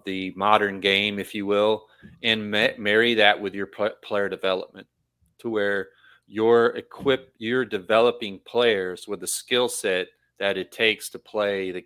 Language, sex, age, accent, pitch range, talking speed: English, male, 30-49, American, 95-110 Hz, 150 wpm